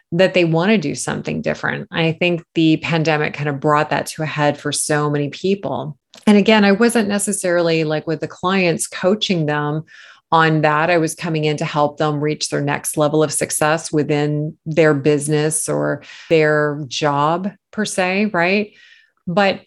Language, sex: English, female